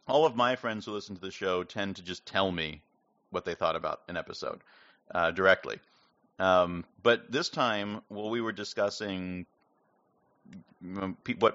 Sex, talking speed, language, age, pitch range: male, 160 wpm, English, 40-59, 90-110 Hz